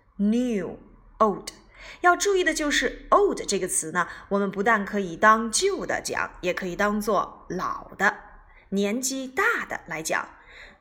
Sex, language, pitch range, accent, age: female, Chinese, 200-335 Hz, native, 20-39